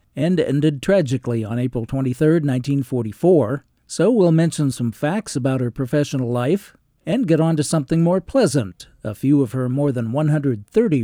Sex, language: male, English